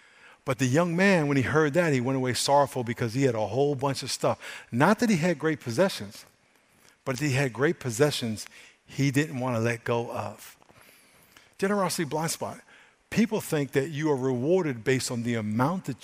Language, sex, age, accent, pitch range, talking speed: English, male, 50-69, American, 125-160 Hz, 200 wpm